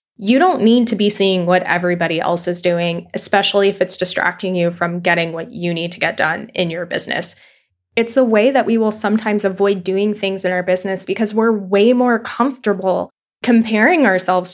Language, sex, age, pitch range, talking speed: English, female, 10-29, 185-215 Hz, 195 wpm